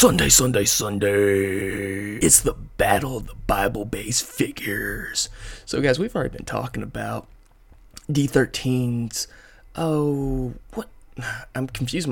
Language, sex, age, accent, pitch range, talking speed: English, male, 20-39, American, 105-135 Hz, 110 wpm